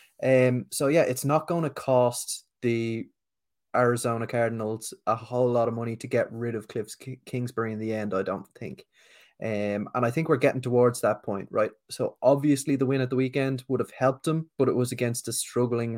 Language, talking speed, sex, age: English, 205 wpm, male, 20-39